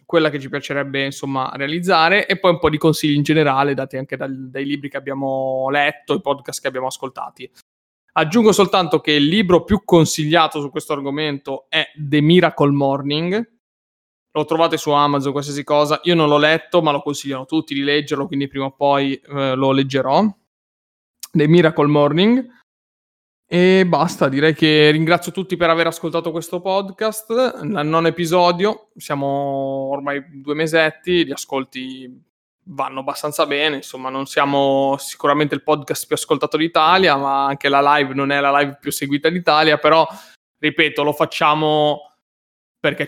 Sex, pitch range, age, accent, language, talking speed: male, 140-165 Hz, 20-39, native, Italian, 160 wpm